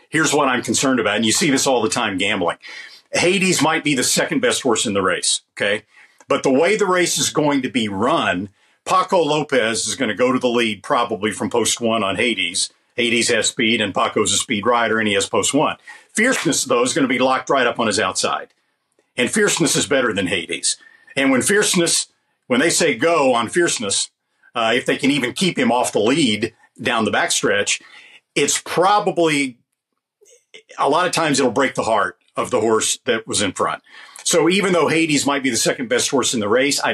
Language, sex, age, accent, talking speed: English, male, 50-69, American, 215 wpm